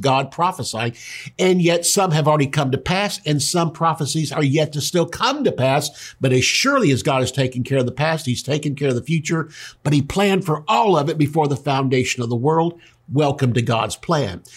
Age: 50-69